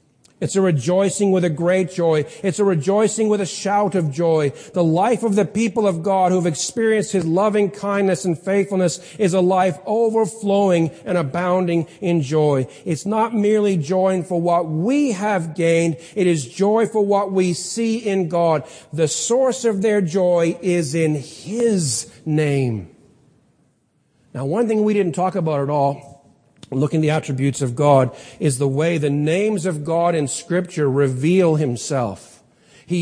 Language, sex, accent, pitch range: English, male, American, 160-210 Hz